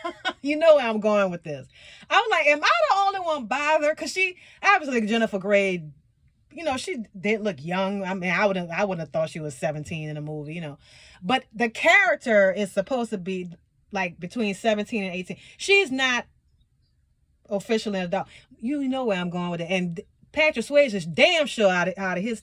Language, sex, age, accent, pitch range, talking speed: English, female, 30-49, American, 190-290 Hz, 210 wpm